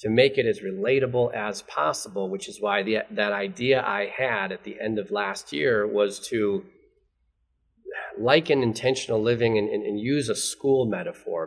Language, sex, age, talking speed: English, male, 30-49, 165 wpm